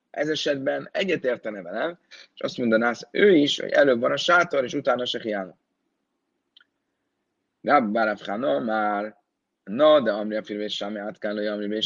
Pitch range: 105-125 Hz